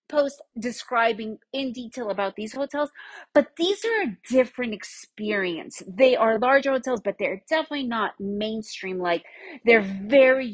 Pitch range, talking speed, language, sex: 195-265 Hz, 140 wpm, English, female